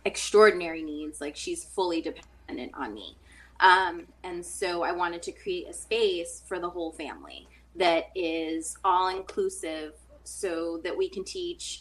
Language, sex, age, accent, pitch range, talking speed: English, female, 20-39, American, 165-225 Hz, 145 wpm